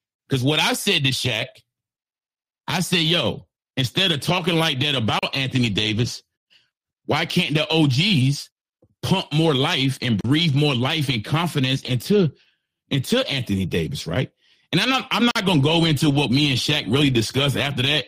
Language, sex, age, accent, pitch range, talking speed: English, male, 40-59, American, 135-175 Hz, 165 wpm